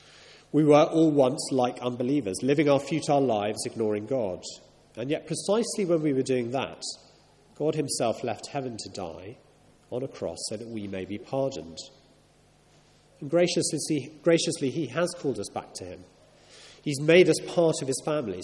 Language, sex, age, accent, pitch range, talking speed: English, male, 40-59, British, 115-160 Hz, 170 wpm